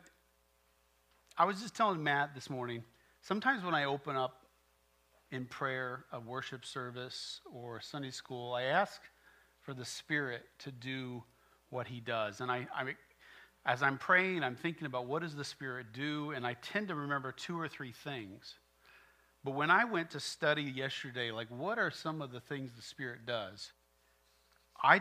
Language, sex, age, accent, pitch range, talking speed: English, male, 40-59, American, 105-145 Hz, 170 wpm